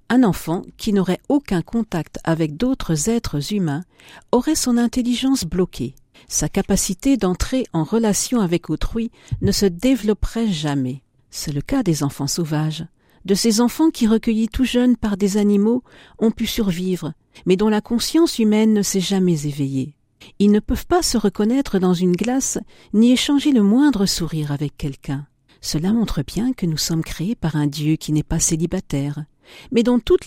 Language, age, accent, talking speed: French, 50-69, French, 170 wpm